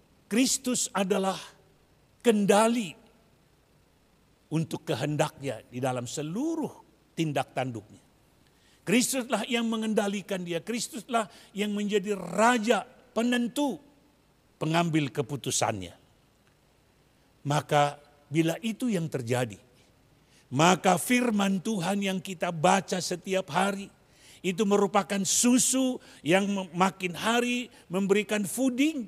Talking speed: 85 wpm